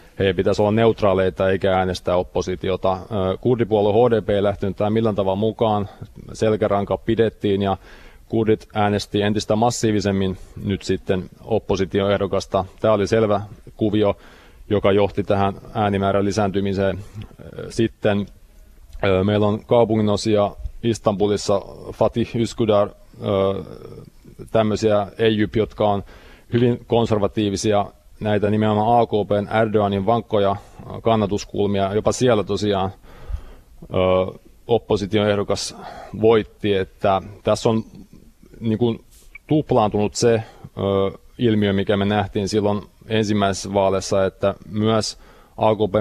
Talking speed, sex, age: 105 wpm, male, 30-49